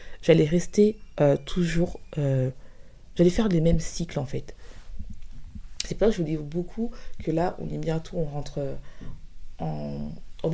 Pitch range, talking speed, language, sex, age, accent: 145-185 Hz, 160 wpm, French, female, 20-39, French